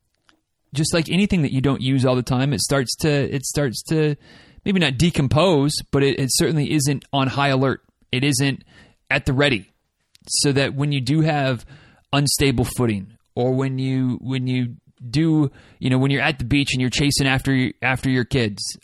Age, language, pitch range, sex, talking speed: 30-49, English, 120-145 Hz, male, 190 wpm